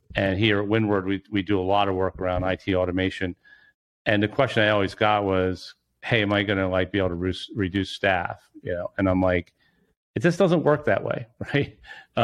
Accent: American